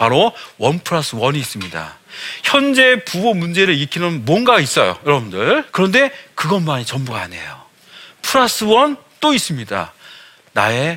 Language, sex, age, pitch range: Korean, male, 40-59, 140-200 Hz